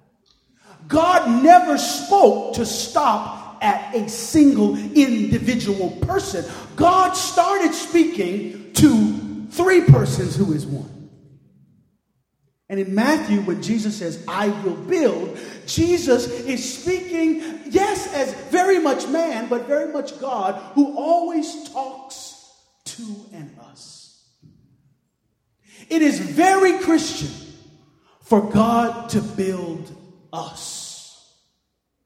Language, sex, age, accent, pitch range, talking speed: English, male, 40-59, American, 200-320 Hz, 100 wpm